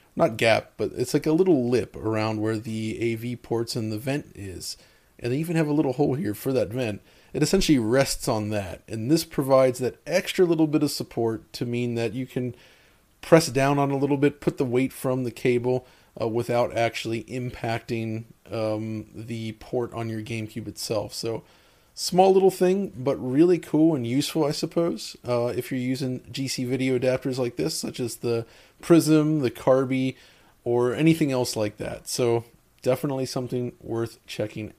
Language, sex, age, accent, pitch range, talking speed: English, male, 30-49, American, 115-155 Hz, 185 wpm